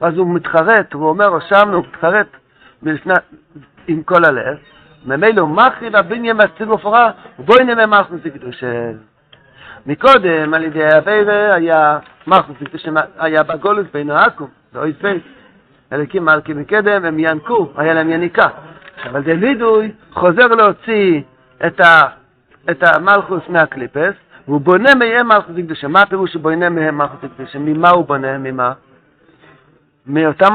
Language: Hebrew